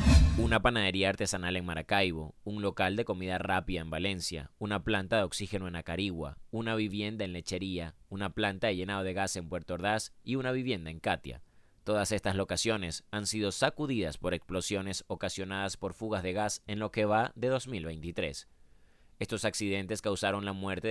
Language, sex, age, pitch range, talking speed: Spanish, male, 30-49, 90-105 Hz, 170 wpm